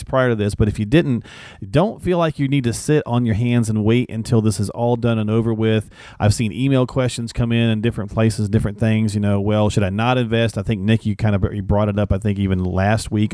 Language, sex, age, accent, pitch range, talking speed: English, male, 40-59, American, 105-130 Hz, 265 wpm